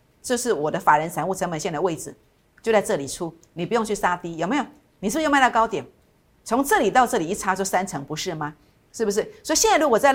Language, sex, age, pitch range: Chinese, female, 50-69, 175-240 Hz